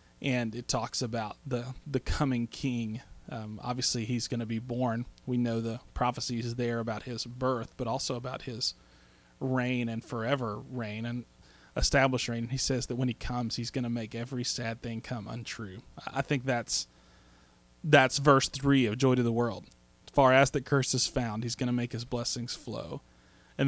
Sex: male